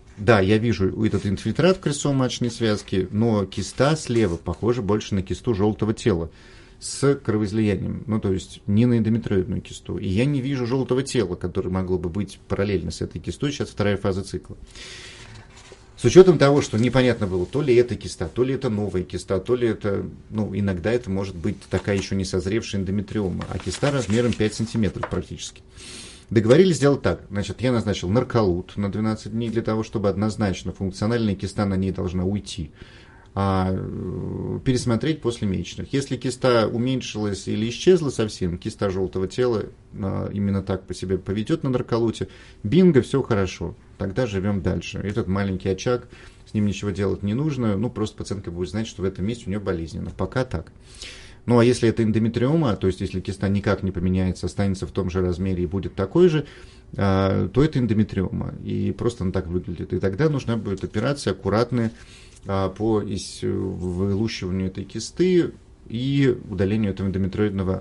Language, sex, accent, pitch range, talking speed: Russian, male, native, 95-120 Hz, 170 wpm